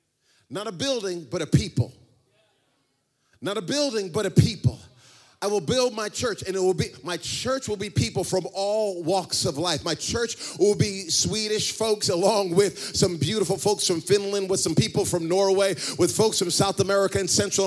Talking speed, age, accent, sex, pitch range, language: 190 wpm, 30-49, American, male, 150-200 Hz, Swedish